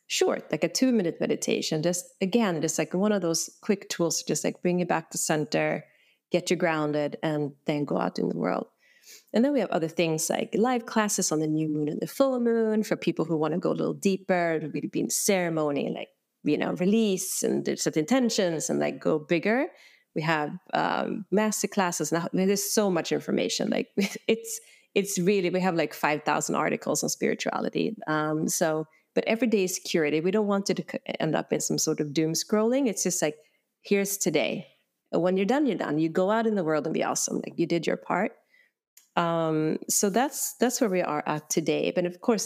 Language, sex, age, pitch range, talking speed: English, female, 30-49, 160-220 Hz, 220 wpm